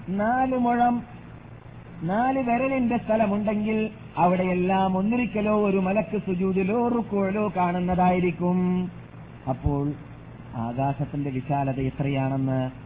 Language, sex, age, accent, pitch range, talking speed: Malayalam, male, 50-69, native, 160-200 Hz, 65 wpm